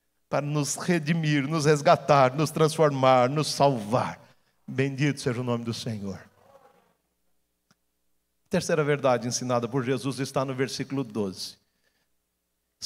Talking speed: 115 wpm